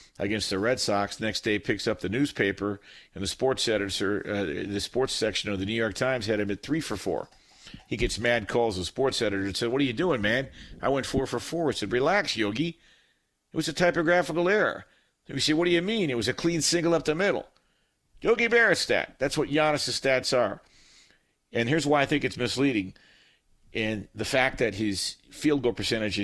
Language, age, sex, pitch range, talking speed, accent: English, 50-69, male, 105-150 Hz, 215 wpm, American